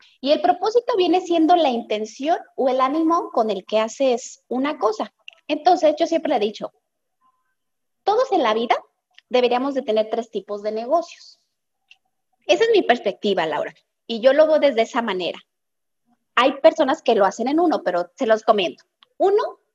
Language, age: Spanish, 20-39